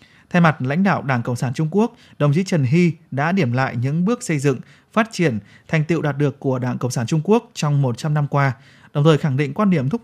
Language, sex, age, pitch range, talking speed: Vietnamese, male, 20-39, 135-175 Hz, 255 wpm